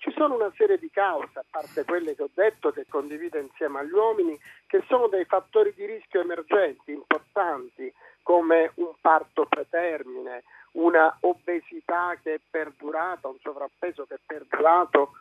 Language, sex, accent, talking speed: Italian, male, native, 150 wpm